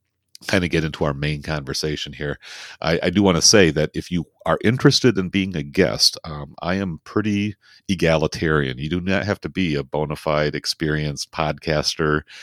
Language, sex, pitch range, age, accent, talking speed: English, male, 75-85 Hz, 40-59, American, 190 wpm